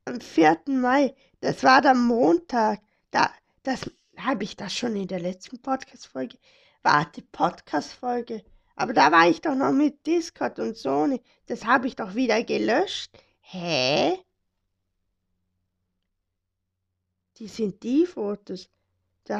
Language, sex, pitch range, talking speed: German, female, 185-265 Hz, 125 wpm